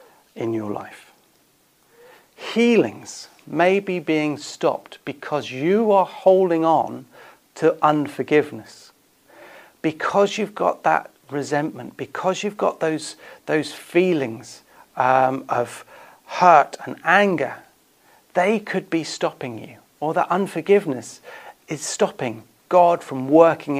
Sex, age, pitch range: male, 40-59, 135-165 Hz